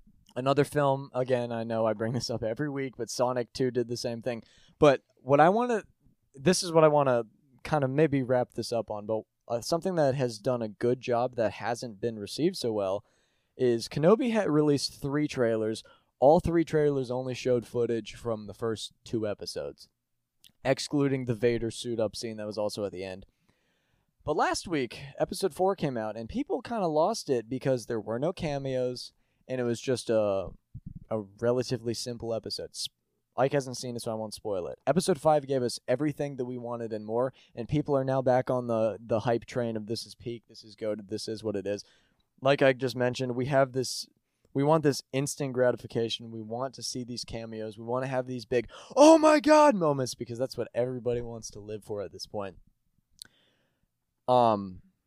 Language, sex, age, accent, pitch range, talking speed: English, male, 20-39, American, 115-140 Hz, 205 wpm